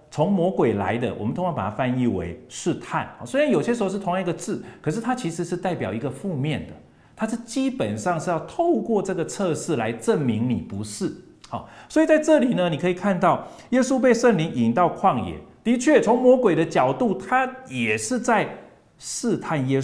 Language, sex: Chinese, male